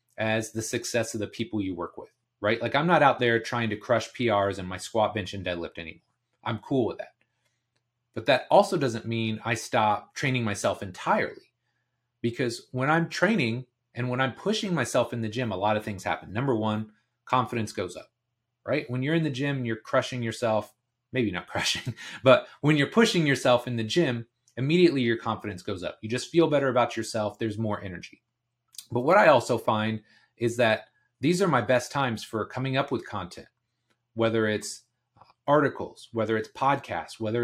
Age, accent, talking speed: 30-49, American, 195 wpm